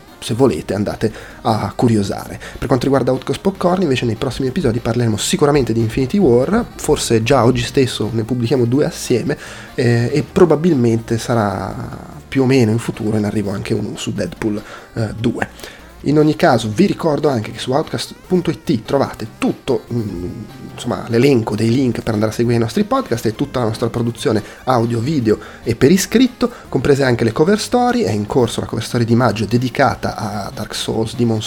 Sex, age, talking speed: male, 30-49, 175 wpm